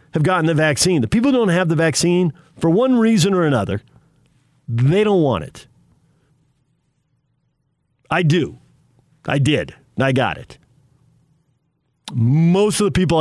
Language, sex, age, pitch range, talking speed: English, male, 50-69, 125-160 Hz, 140 wpm